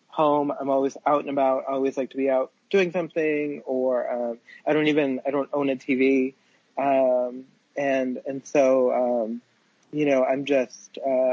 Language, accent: English, American